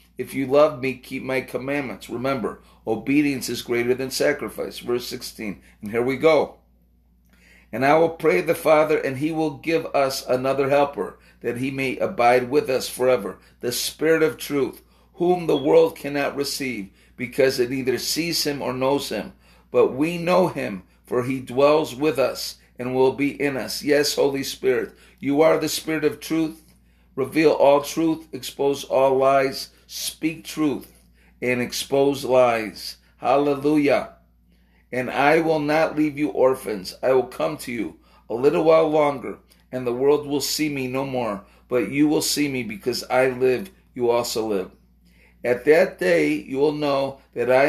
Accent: American